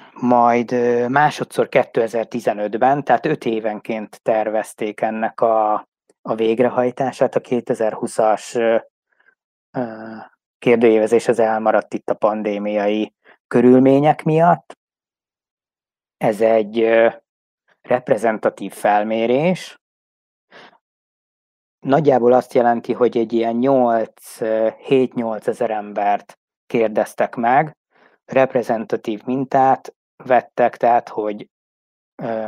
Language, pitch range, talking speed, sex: Hungarian, 110-125 Hz, 75 wpm, male